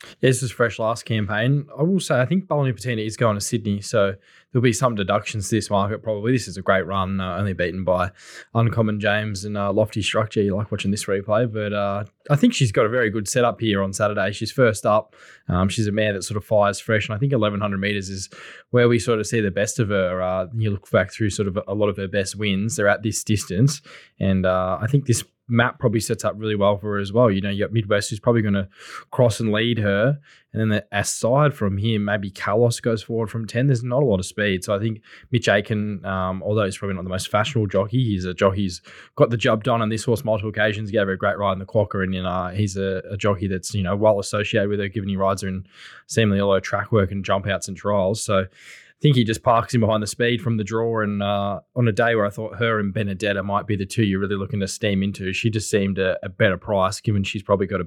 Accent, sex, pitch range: Australian, male, 100-115 Hz